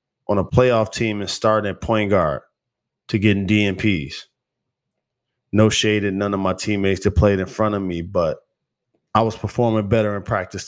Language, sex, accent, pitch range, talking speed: English, male, American, 95-115 Hz, 180 wpm